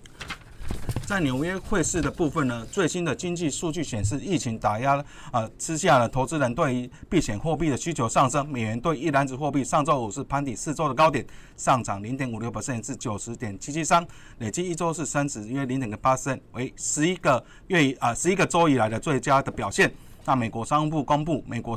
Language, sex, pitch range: Chinese, male, 120-150 Hz